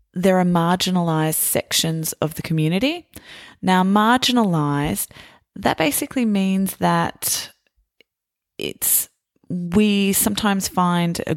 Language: English